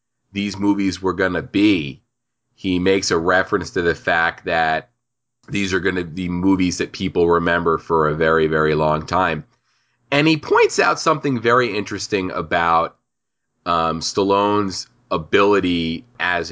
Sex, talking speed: male, 150 wpm